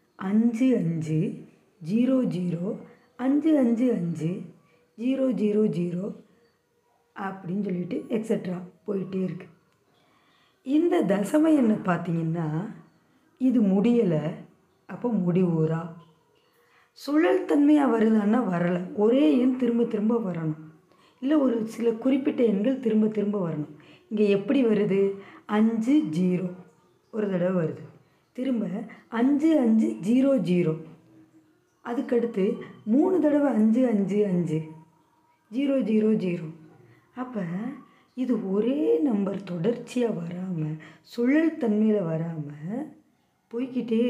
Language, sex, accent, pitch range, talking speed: Tamil, female, native, 170-235 Hz, 95 wpm